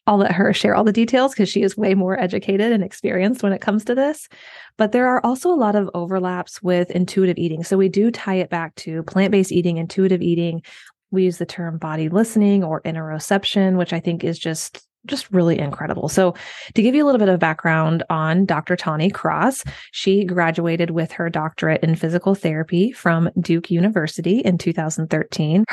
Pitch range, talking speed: 160-190 Hz, 195 wpm